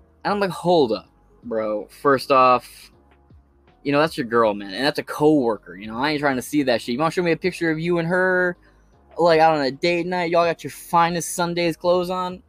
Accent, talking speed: American, 245 wpm